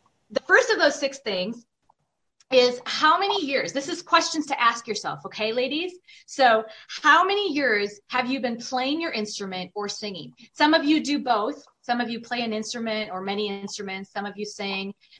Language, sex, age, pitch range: English, female, 30-49, 210-275 Hz